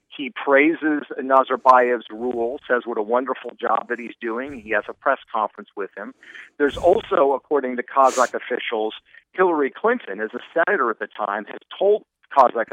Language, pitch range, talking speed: English, 125-160 Hz, 170 wpm